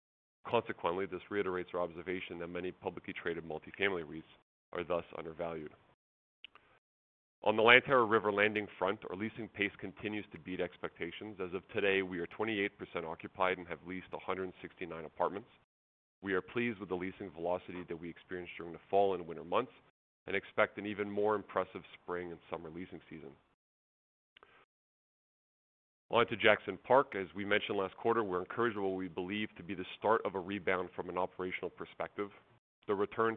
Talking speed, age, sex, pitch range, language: 165 wpm, 30-49, male, 90-105 Hz, English